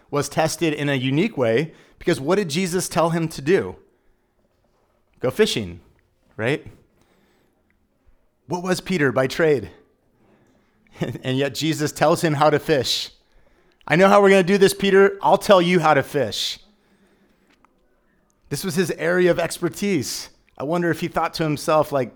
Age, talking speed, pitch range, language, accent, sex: 30-49, 160 wpm, 125-170 Hz, English, American, male